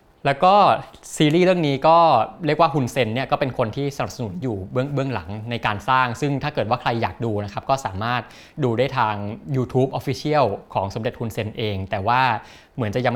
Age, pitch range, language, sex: 20-39, 115-145 Hz, Thai, male